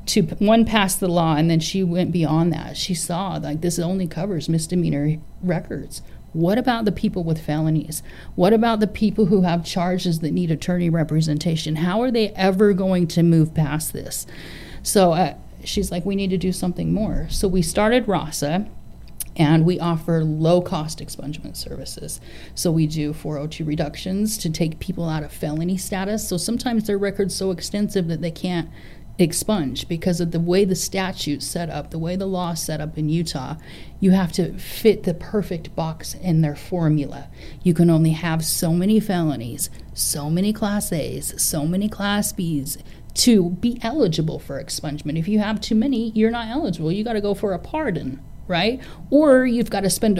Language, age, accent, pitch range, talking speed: English, 30-49, American, 160-205 Hz, 185 wpm